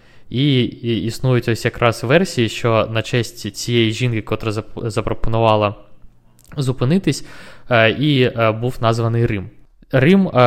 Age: 20-39